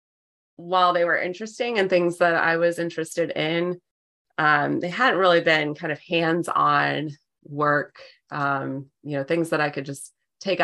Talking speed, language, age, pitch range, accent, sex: 170 wpm, English, 20-39, 145-170 Hz, American, female